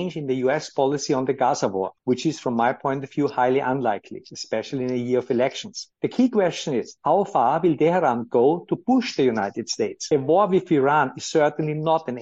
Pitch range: 130-160 Hz